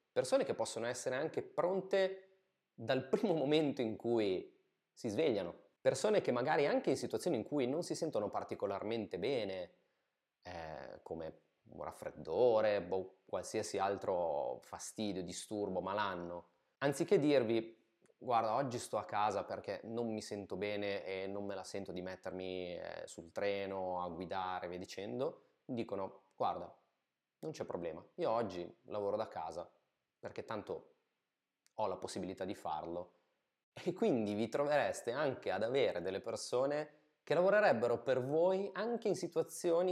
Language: Italian